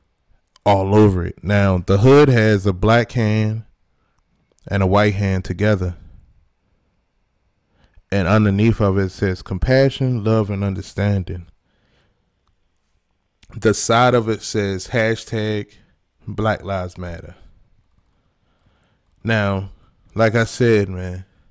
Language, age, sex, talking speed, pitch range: English, 20-39, male, 105 wpm, 95-115 Hz